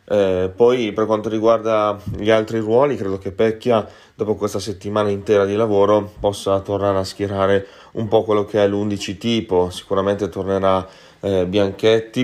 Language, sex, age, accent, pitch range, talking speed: Italian, male, 30-49, native, 95-110 Hz, 155 wpm